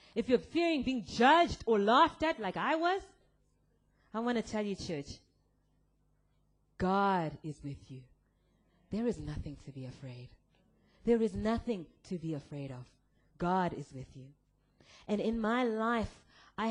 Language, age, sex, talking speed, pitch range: English, 20-39, female, 155 wpm, 175-290 Hz